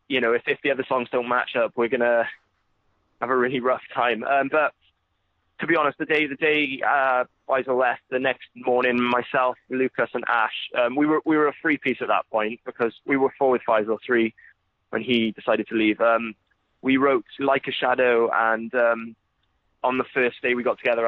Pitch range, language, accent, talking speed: 110-130 Hz, English, British, 210 wpm